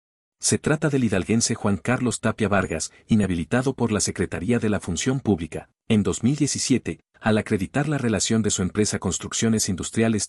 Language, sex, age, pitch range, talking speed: Spanish, male, 50-69, 95-120 Hz, 155 wpm